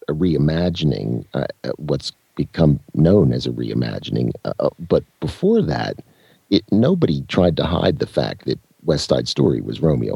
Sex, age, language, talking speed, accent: male, 50-69, English, 155 wpm, American